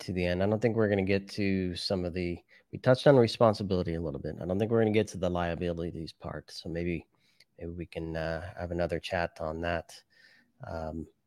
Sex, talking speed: male, 235 wpm